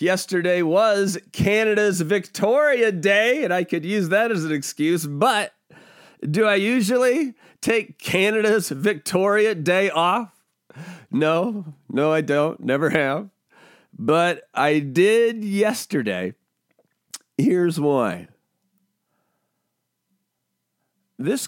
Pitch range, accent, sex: 140-210 Hz, American, male